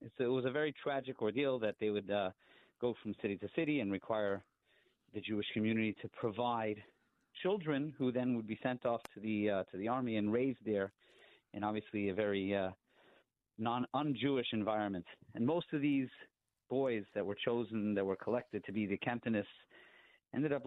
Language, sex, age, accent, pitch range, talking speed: English, male, 40-59, American, 105-130 Hz, 185 wpm